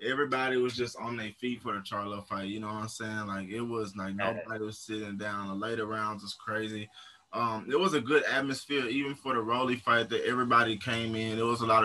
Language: English